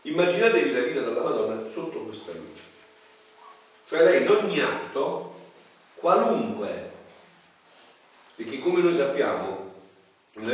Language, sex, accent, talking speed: Italian, male, native, 110 wpm